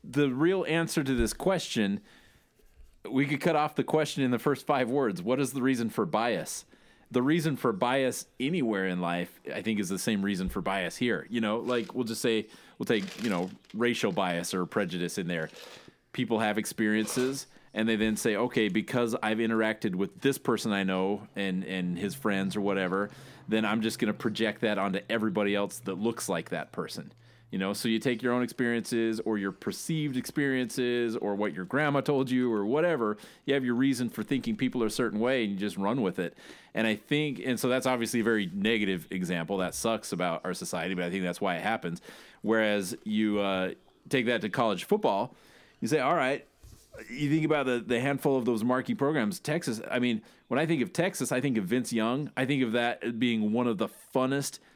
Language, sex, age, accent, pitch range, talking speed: English, male, 30-49, American, 105-130 Hz, 215 wpm